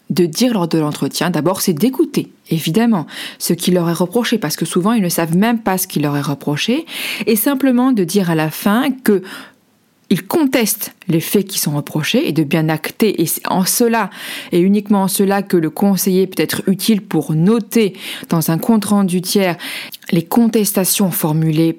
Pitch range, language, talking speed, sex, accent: 175-235 Hz, French, 190 wpm, female, French